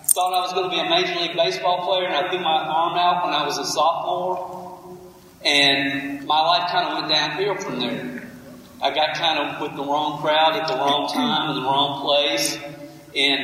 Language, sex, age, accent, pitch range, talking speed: English, male, 40-59, American, 155-220 Hz, 215 wpm